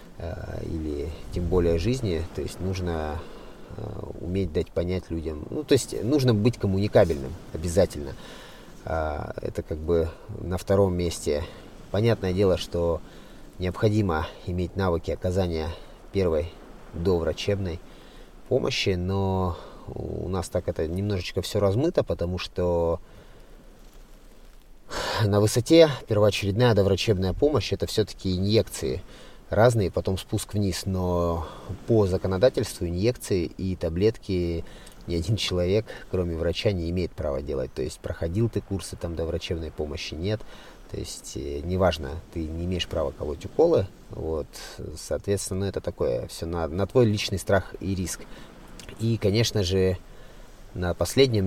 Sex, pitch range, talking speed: male, 85-105 Hz, 125 wpm